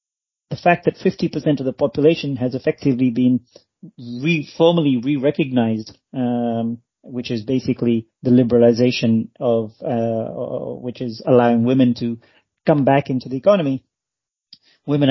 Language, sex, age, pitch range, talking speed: English, male, 30-49, 120-140 Hz, 130 wpm